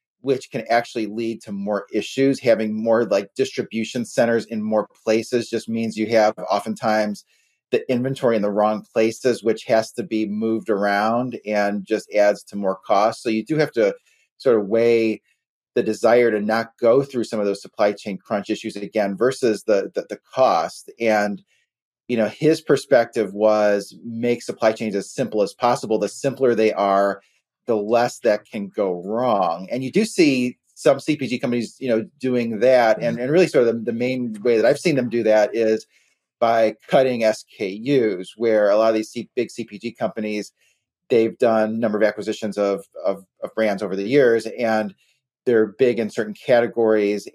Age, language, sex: 30-49, English, male